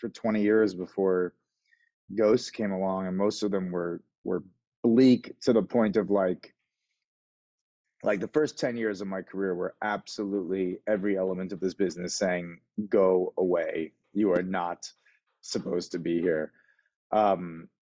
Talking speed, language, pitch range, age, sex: 150 wpm, English, 95-110 Hz, 30-49, male